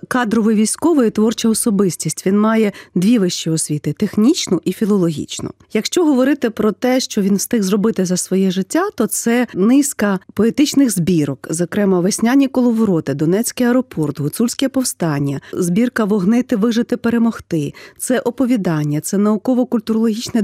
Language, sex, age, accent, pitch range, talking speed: Russian, female, 40-59, native, 180-230 Hz, 130 wpm